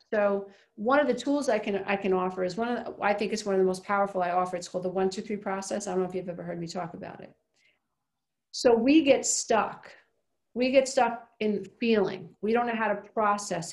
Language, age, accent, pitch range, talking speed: English, 40-59, American, 185-225 Hz, 250 wpm